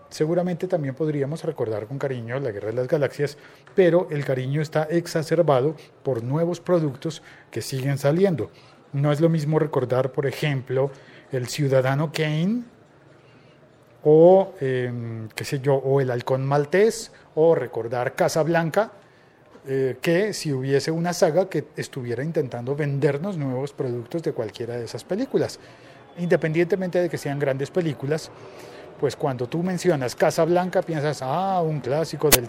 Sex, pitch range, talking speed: male, 135-175 Hz, 145 wpm